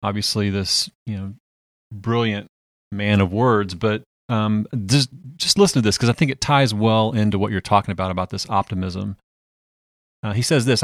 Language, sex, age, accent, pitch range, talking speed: English, male, 30-49, American, 105-140 Hz, 185 wpm